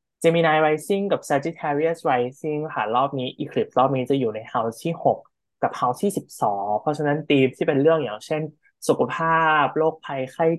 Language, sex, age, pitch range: Thai, male, 20-39, 120-155 Hz